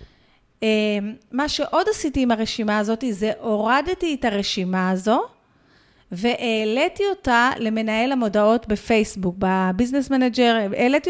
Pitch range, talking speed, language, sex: 210-285 Hz, 110 wpm, Hebrew, female